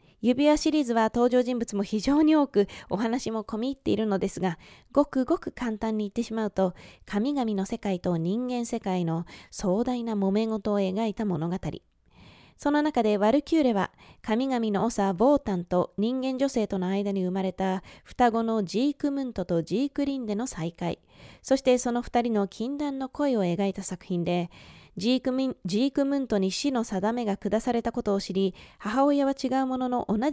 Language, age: Japanese, 20-39